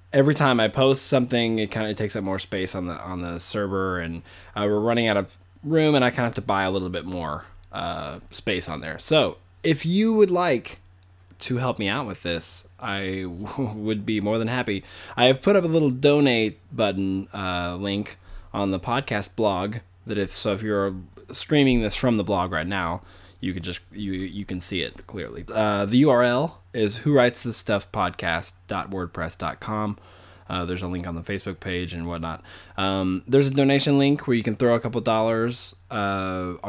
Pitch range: 90-120 Hz